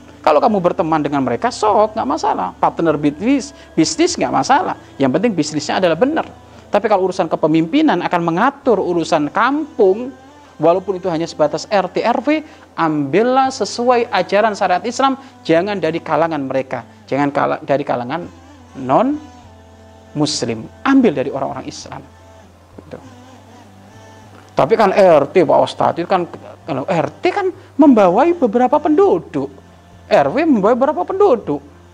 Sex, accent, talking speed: male, native, 120 wpm